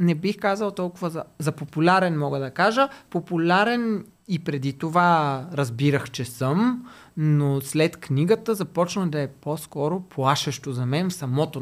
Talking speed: 150 wpm